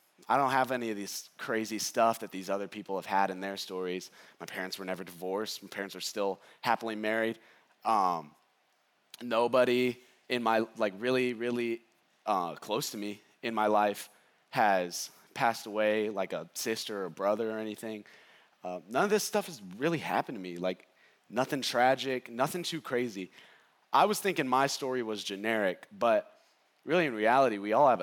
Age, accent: 20-39, American